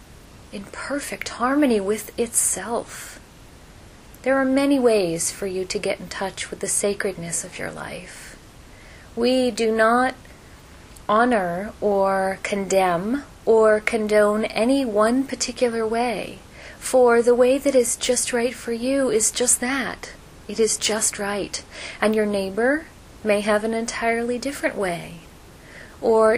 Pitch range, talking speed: 200-240 Hz, 135 wpm